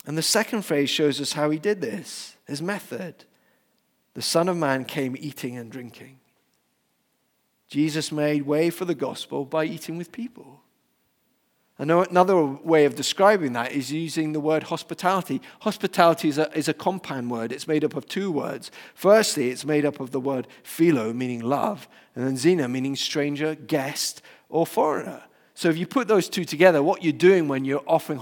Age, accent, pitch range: 40-59, British, 150-195 Hz